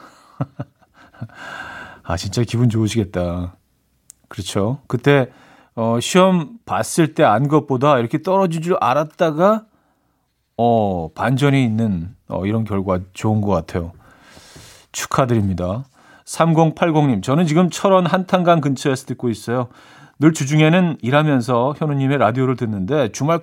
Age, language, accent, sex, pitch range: 40-59, Korean, native, male, 100-150 Hz